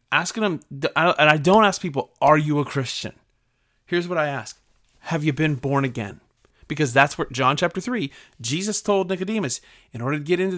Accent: American